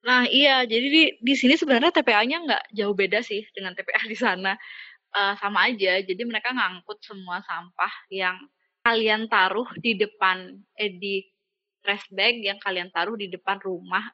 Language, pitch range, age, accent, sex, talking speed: Indonesian, 190-245 Hz, 20-39, native, female, 165 wpm